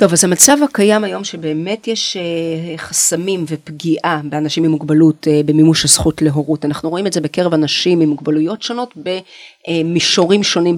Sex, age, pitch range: female, 40-59, 160-205 Hz